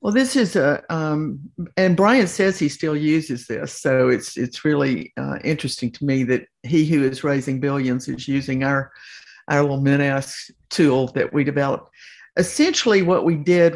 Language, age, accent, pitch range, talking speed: English, 60-79, American, 135-175 Hz, 175 wpm